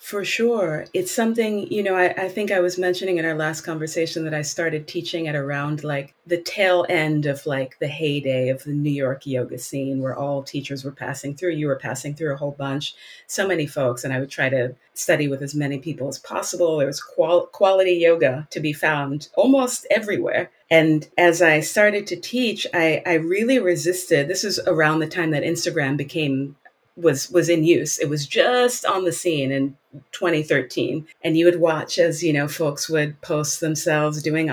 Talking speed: 200 wpm